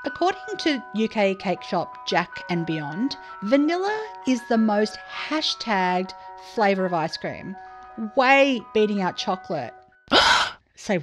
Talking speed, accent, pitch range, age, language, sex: 120 wpm, Australian, 190-270 Hz, 40-59, English, female